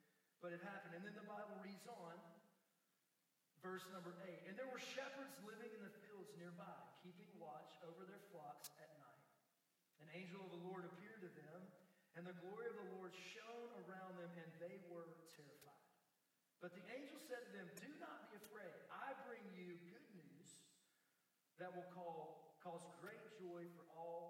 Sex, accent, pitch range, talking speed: male, American, 160-200 Hz, 175 wpm